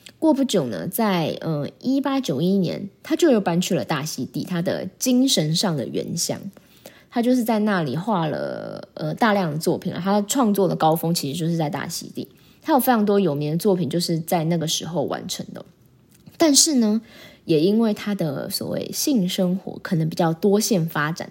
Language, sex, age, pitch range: Chinese, female, 20-39, 170-220 Hz